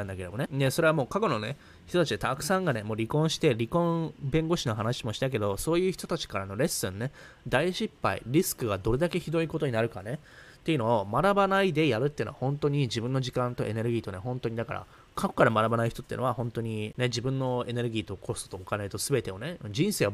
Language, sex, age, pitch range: Japanese, male, 20-39, 110-150 Hz